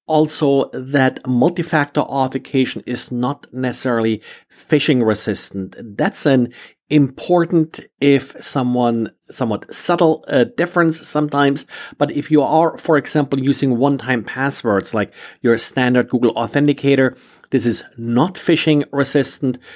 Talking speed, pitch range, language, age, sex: 115 wpm, 120-150 Hz, English, 50-69, male